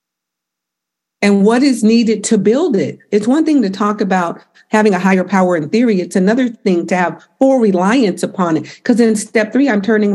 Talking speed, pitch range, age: 200 wpm, 175-220 Hz, 50-69